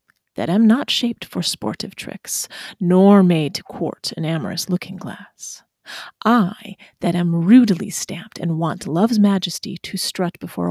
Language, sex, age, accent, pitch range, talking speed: English, female, 30-49, American, 180-220 Hz, 150 wpm